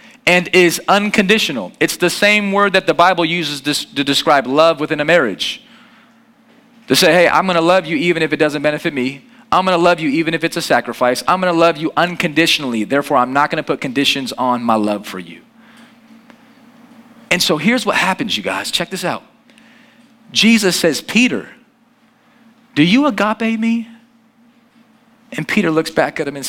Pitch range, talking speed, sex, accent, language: 170-240 Hz, 180 wpm, male, American, English